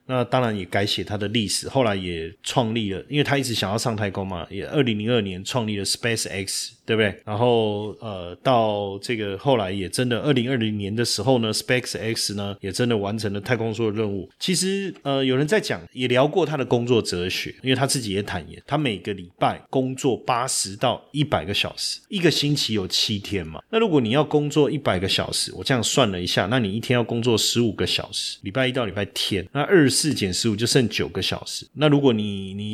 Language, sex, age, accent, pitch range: Chinese, male, 30-49, native, 100-135 Hz